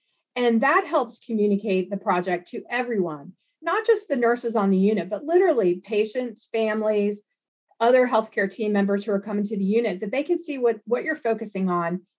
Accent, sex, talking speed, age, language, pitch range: American, female, 185 wpm, 40-59, English, 195-270 Hz